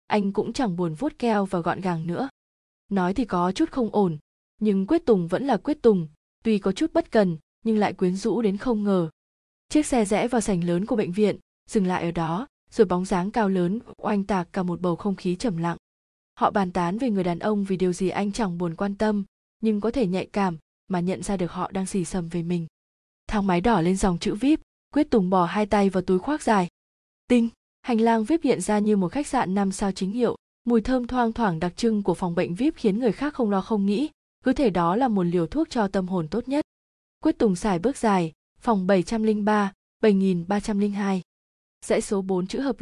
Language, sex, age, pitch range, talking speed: Vietnamese, female, 20-39, 185-230 Hz, 230 wpm